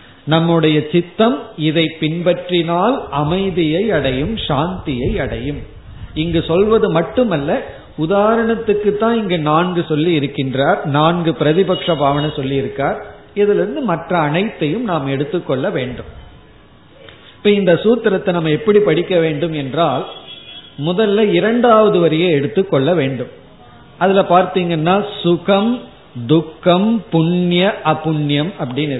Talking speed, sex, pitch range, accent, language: 100 wpm, male, 150-200 Hz, native, Tamil